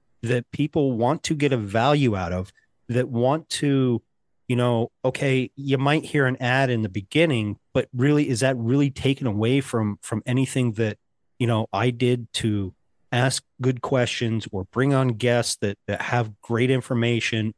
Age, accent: 30-49, American